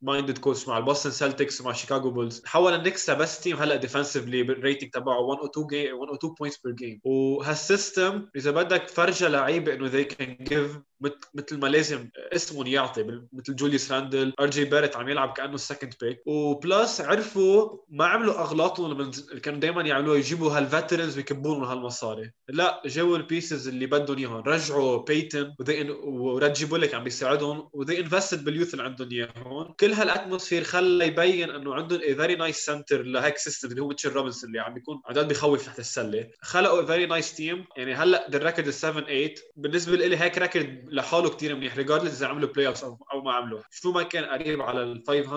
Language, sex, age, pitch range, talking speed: Arabic, male, 20-39, 135-160 Hz, 165 wpm